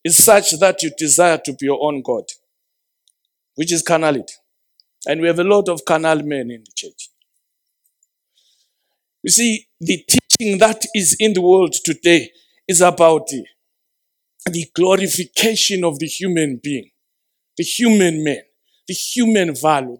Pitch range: 170-250 Hz